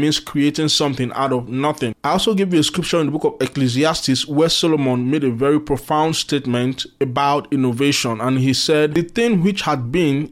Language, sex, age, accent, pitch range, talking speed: English, male, 20-39, Nigerian, 140-175 Hz, 200 wpm